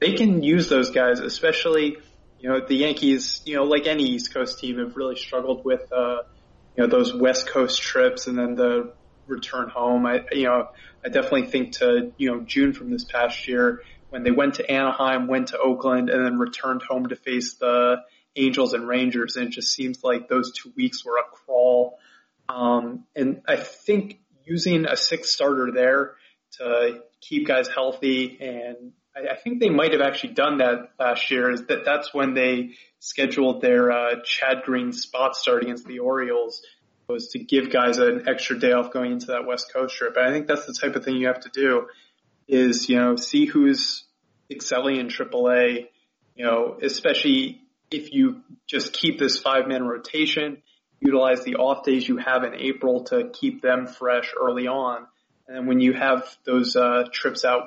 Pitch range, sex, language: 125-150 Hz, male, English